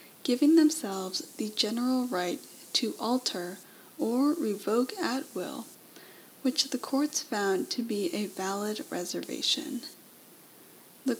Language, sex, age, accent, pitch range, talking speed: English, female, 10-29, American, 195-275 Hz, 115 wpm